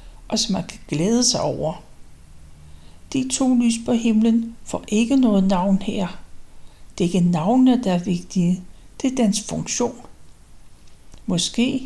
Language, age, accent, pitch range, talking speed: Danish, 60-79, native, 180-230 Hz, 145 wpm